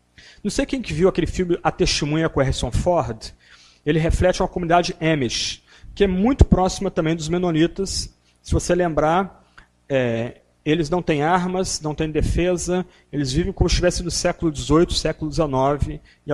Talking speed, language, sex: 170 wpm, Portuguese, male